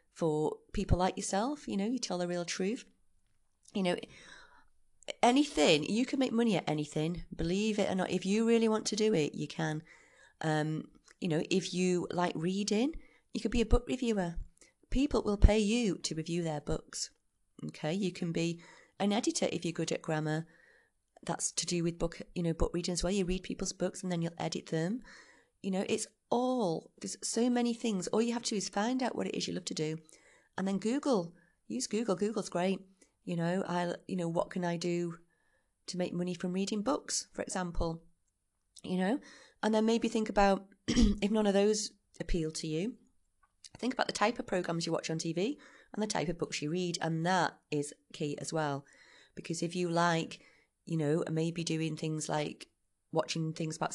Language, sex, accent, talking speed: English, female, British, 200 wpm